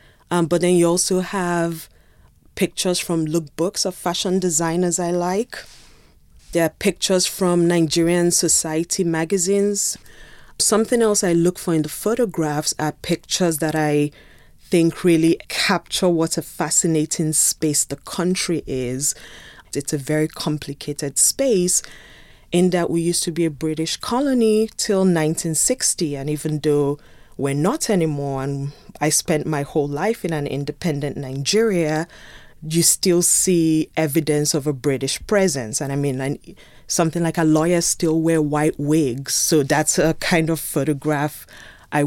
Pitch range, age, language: 145-175 Hz, 20-39, English